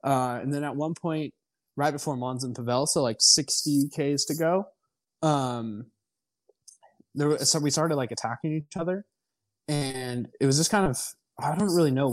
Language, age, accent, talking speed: English, 20-39, American, 180 wpm